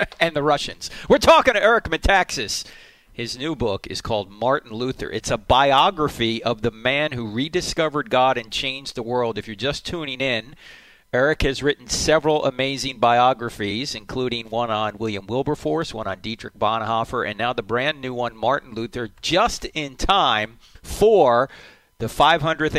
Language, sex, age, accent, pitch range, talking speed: English, male, 40-59, American, 110-145 Hz, 165 wpm